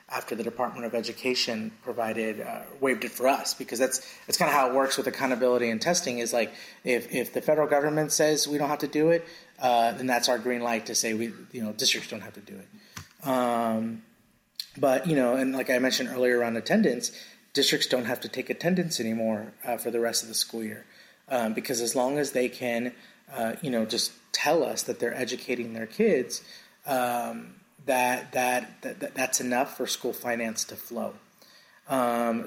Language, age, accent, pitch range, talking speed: English, 30-49, American, 115-135 Hz, 200 wpm